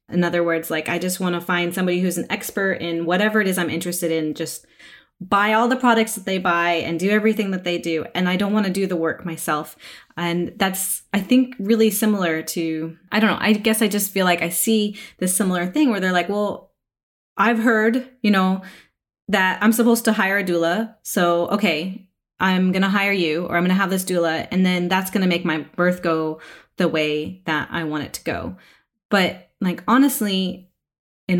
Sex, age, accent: female, 20-39, American